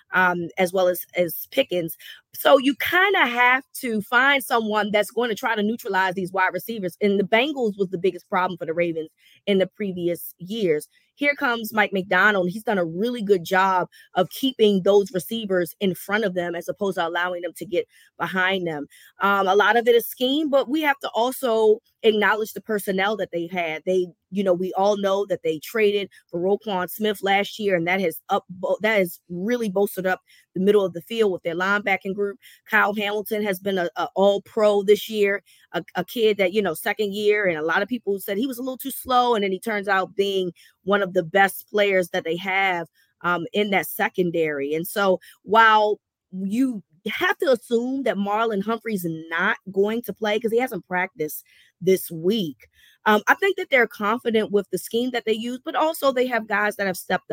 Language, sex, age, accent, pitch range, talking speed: English, female, 20-39, American, 180-220 Hz, 215 wpm